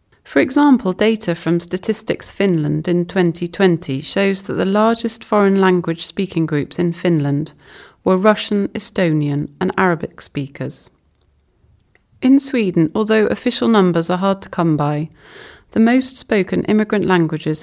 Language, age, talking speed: English, 30-49, 135 wpm